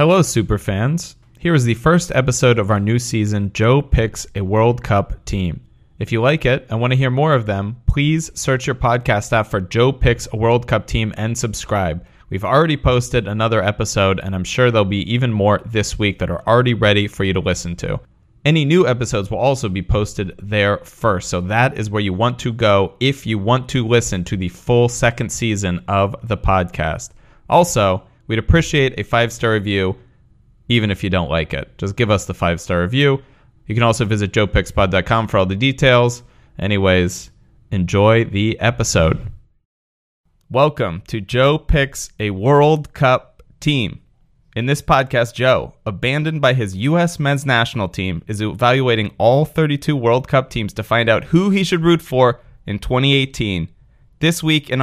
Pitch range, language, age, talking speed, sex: 100-130 Hz, English, 30-49, 180 wpm, male